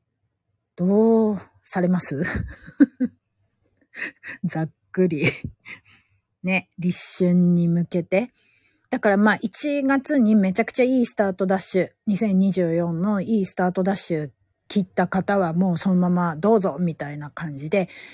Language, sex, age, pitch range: Japanese, female, 40-59, 150-195 Hz